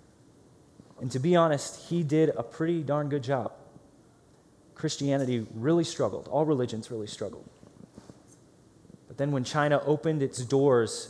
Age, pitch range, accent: 20-39, 120-155 Hz, American